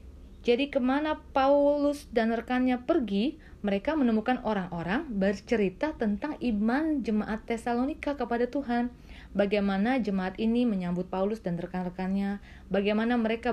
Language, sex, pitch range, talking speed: Indonesian, female, 185-245 Hz, 110 wpm